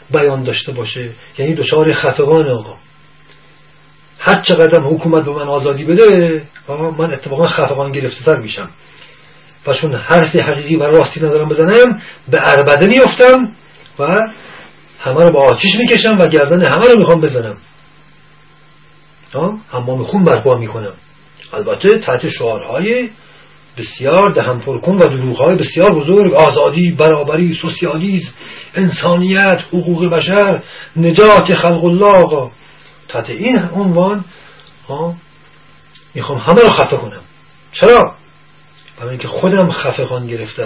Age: 40-59